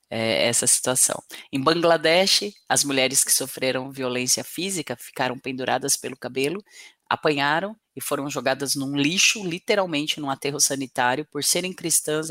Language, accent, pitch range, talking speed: Portuguese, Brazilian, 130-160 Hz, 130 wpm